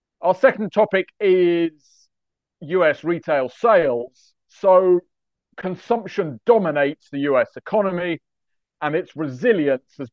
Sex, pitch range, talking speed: male, 135-185 Hz, 100 wpm